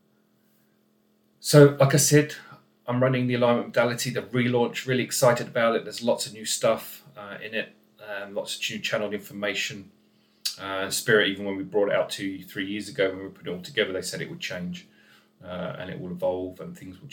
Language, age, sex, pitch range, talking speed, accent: English, 30-49, male, 95-120 Hz, 210 wpm, British